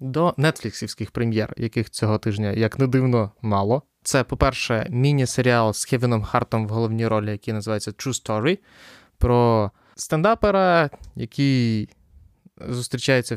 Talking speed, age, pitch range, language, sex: 120 wpm, 20-39, 110-135 Hz, Ukrainian, male